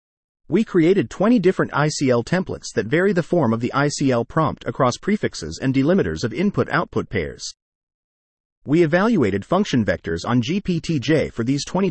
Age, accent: 30-49, American